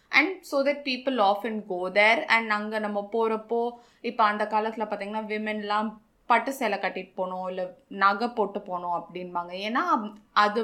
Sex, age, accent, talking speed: female, 20-39, native, 145 wpm